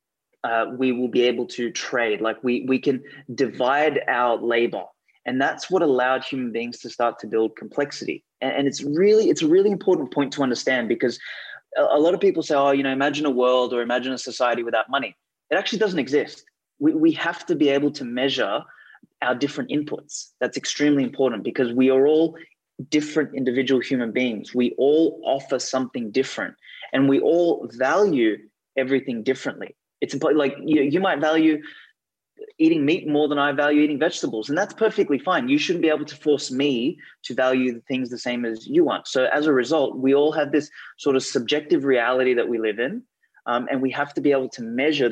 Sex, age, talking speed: male, 20-39, 200 wpm